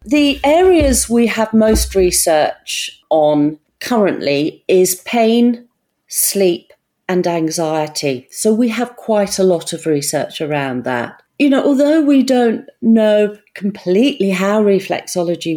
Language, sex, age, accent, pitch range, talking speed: English, female, 40-59, British, 180-245 Hz, 125 wpm